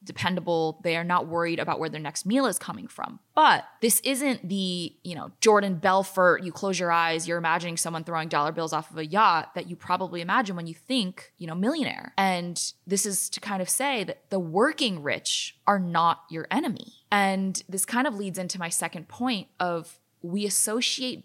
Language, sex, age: English, female, 20-39